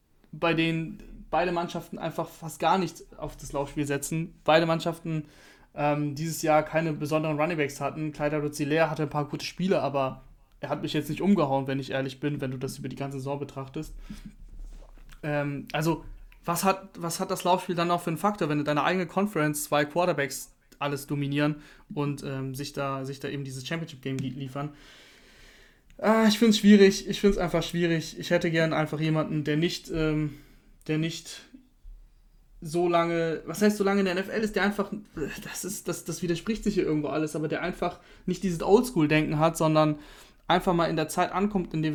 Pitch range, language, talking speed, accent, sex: 150-180 Hz, German, 195 wpm, German, male